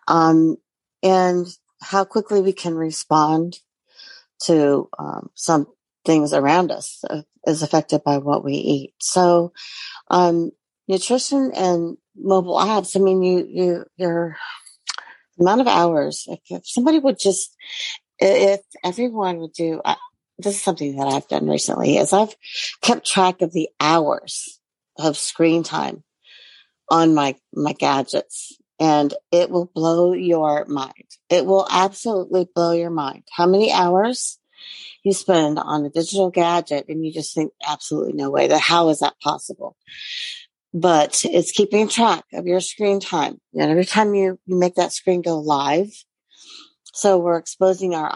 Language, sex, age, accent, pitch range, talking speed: English, female, 50-69, American, 160-195 Hz, 145 wpm